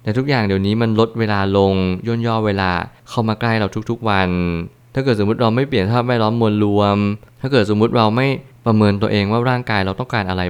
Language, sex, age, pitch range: Thai, male, 20-39, 100-115 Hz